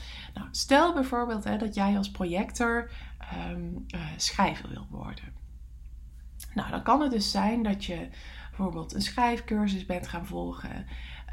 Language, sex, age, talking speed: English, female, 20-39, 145 wpm